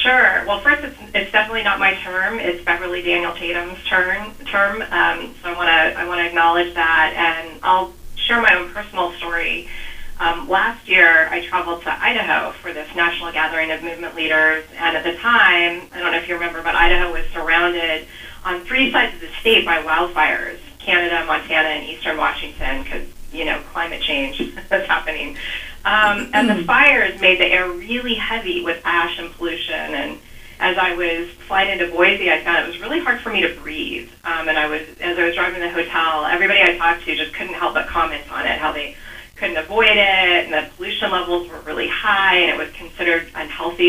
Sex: female